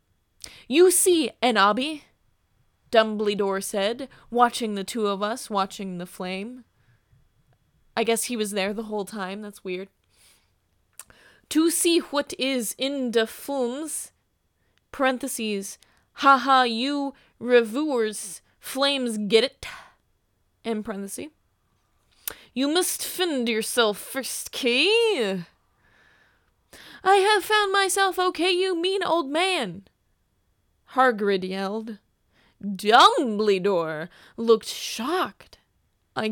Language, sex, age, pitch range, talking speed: English, female, 20-39, 195-260 Hz, 100 wpm